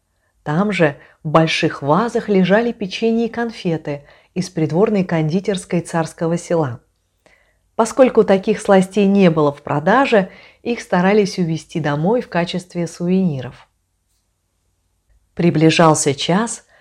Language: Russian